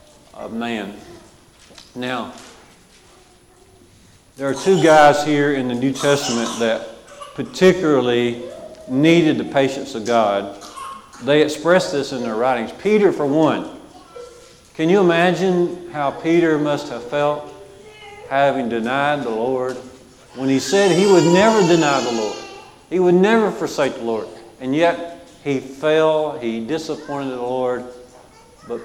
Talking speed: 135 wpm